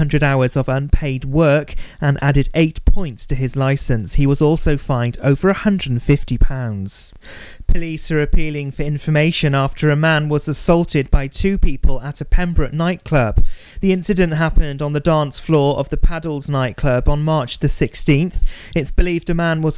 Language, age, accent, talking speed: English, 30-49, British, 165 wpm